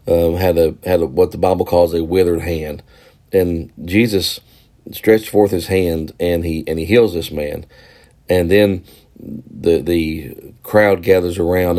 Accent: American